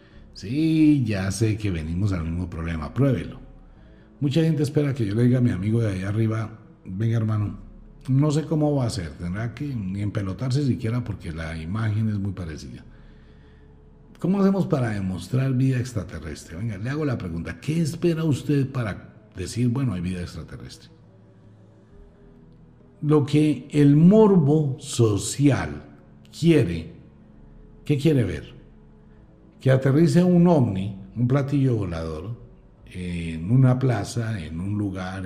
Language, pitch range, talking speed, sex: Spanish, 90-130 Hz, 140 wpm, male